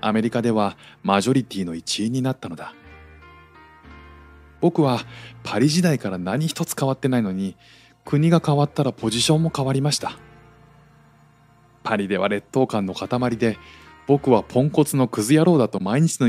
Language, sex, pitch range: Japanese, male, 100-130 Hz